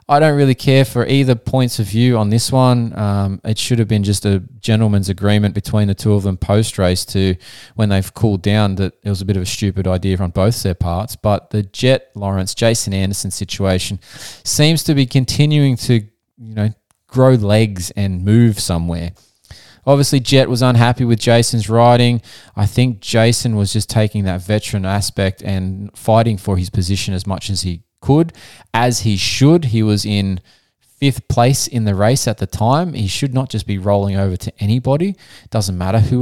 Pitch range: 95-120 Hz